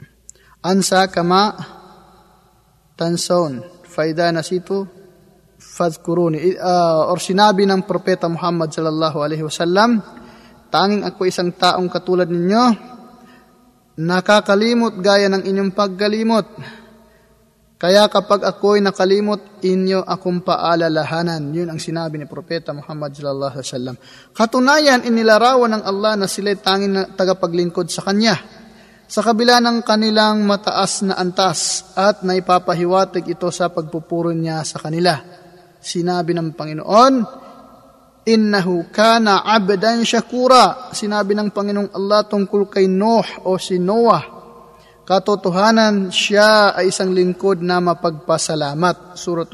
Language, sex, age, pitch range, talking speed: Filipino, male, 20-39, 175-210 Hz, 115 wpm